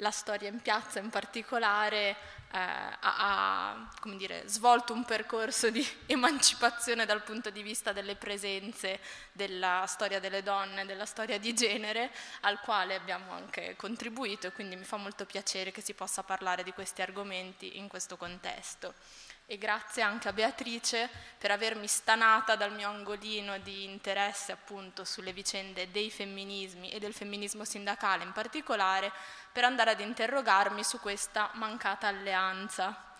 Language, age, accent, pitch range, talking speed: Italian, 20-39, native, 195-225 Hz, 145 wpm